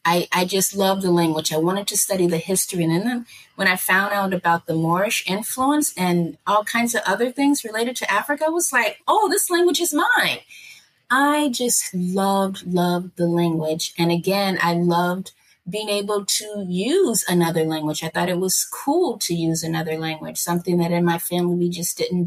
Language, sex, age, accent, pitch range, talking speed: English, female, 30-49, American, 175-210 Hz, 195 wpm